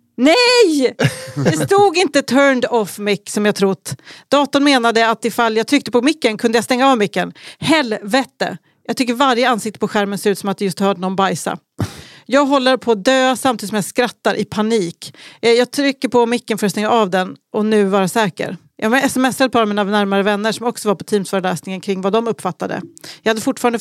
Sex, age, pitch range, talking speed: female, 40-59, 195-240 Hz, 205 wpm